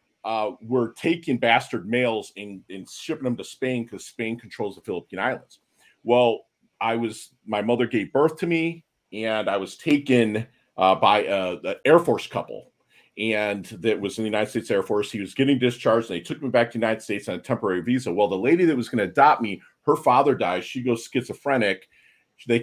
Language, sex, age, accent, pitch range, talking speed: English, male, 40-59, American, 105-125 Hz, 210 wpm